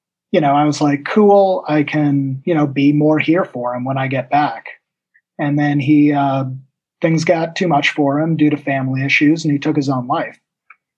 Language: English